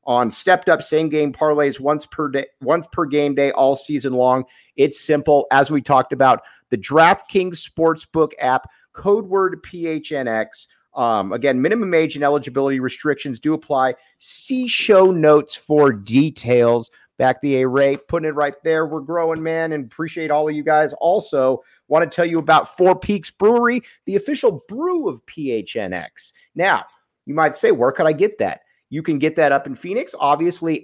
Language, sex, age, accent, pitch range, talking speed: English, male, 40-59, American, 130-185 Hz, 175 wpm